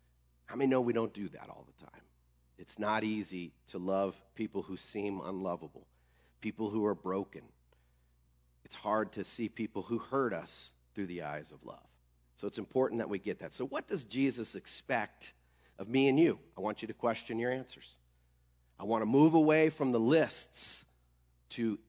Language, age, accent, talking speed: English, 40-59, American, 185 wpm